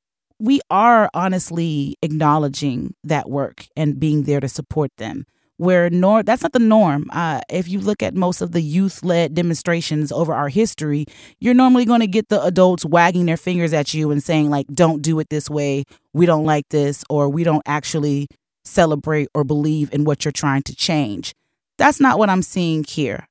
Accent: American